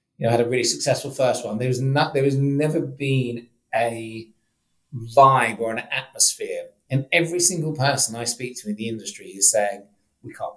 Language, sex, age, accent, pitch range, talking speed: English, male, 30-49, British, 115-145 Hz, 175 wpm